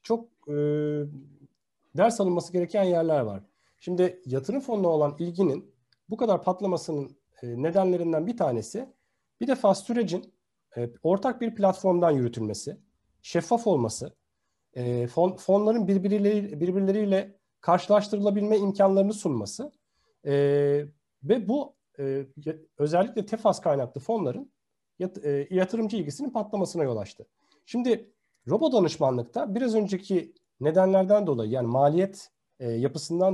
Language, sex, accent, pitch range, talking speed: Turkish, male, native, 145-210 Hz, 115 wpm